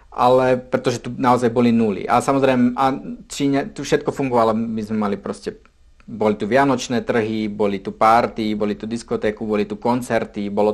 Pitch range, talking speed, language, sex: 110-135 Hz, 180 wpm, Czech, male